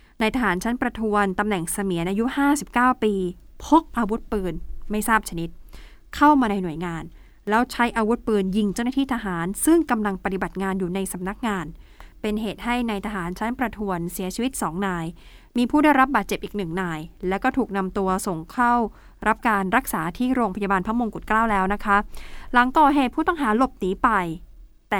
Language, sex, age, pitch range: Thai, female, 20-39, 190-240 Hz